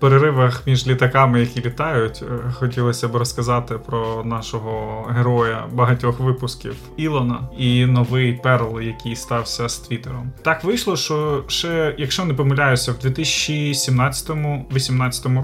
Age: 20-39